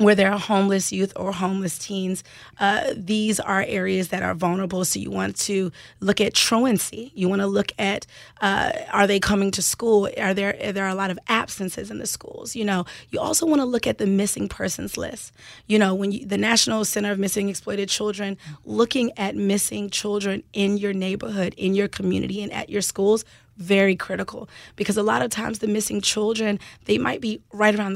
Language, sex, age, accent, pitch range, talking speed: English, female, 30-49, American, 190-210 Hz, 210 wpm